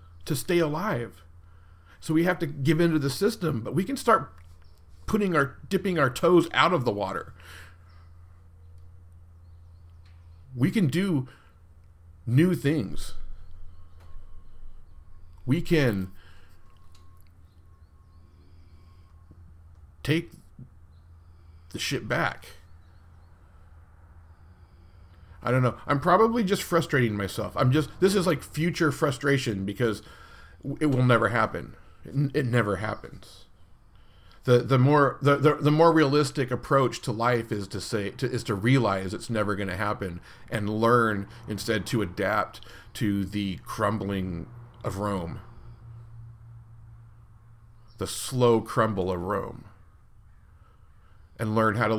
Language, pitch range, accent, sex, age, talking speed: English, 85-130 Hz, American, male, 40-59, 115 wpm